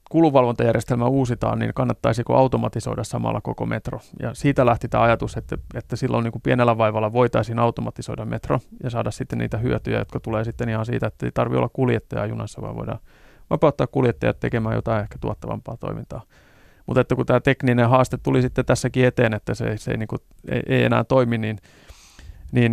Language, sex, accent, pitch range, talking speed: Finnish, male, native, 110-130 Hz, 180 wpm